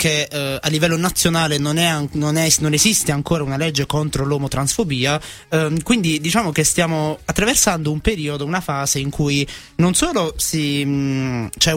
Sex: male